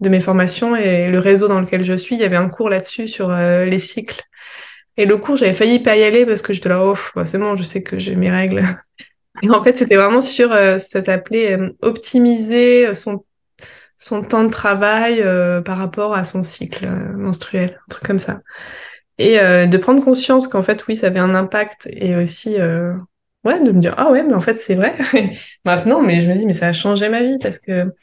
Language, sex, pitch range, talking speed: French, female, 185-220 Hz, 230 wpm